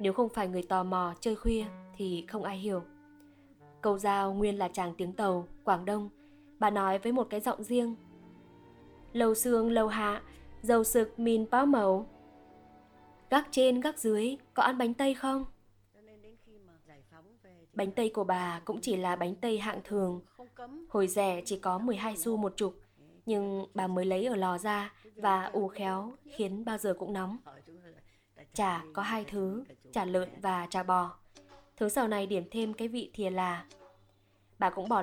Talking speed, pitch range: 175 wpm, 185-230 Hz